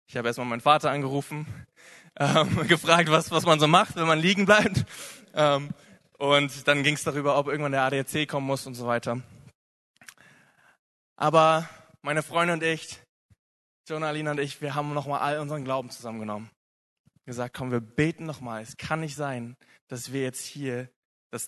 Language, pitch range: German, 125-155 Hz